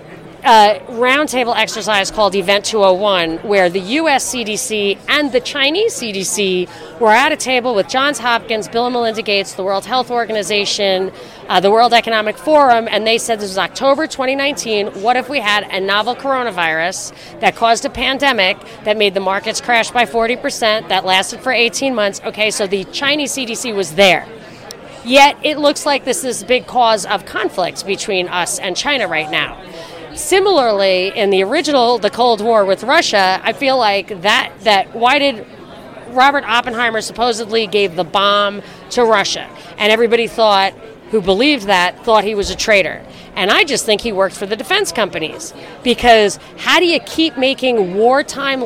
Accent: American